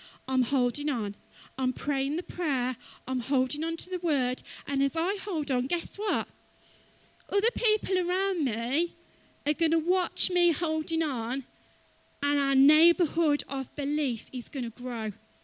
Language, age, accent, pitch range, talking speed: English, 30-49, British, 255-330 Hz, 155 wpm